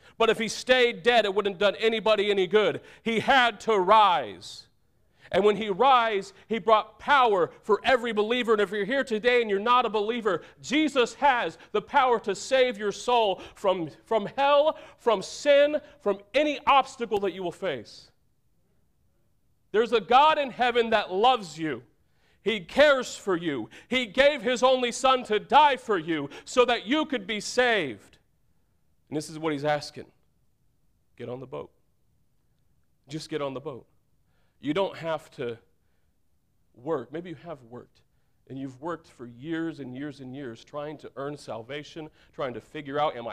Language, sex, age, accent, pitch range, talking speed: English, male, 40-59, American, 150-240 Hz, 175 wpm